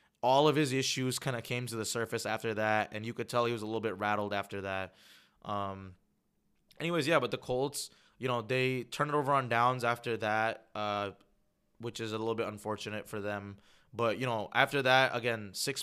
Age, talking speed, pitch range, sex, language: 20-39, 210 wpm, 115-135 Hz, male, English